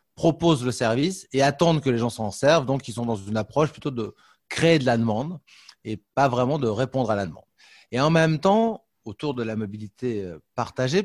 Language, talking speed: French, 210 wpm